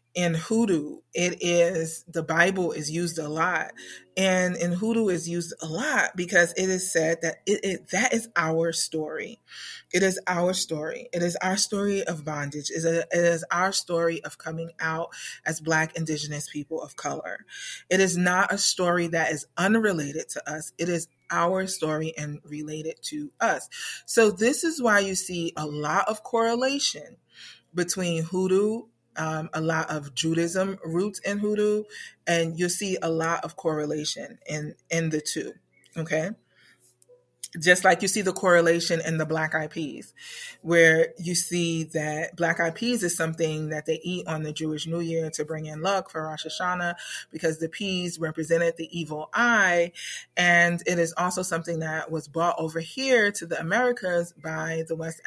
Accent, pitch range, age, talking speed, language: American, 160-185 Hz, 30-49, 175 wpm, English